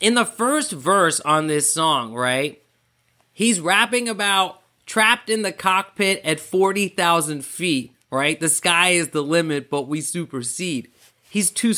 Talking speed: 150 wpm